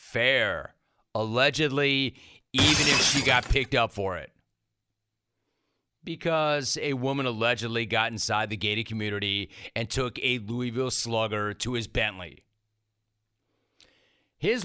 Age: 40-59